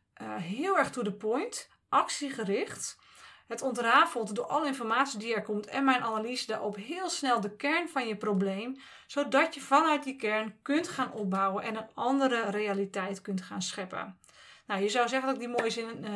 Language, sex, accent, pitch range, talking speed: Dutch, female, Dutch, 210-255 Hz, 190 wpm